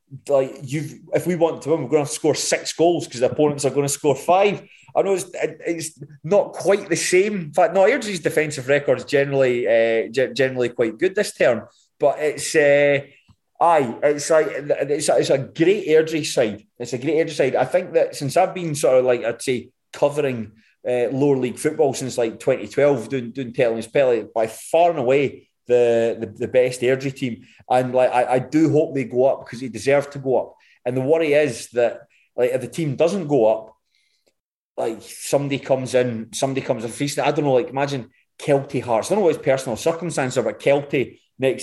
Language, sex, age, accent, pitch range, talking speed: English, male, 20-39, British, 120-155 Hz, 210 wpm